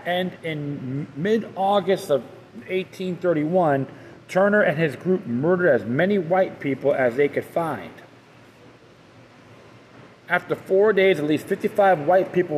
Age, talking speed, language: 40-59, 125 wpm, English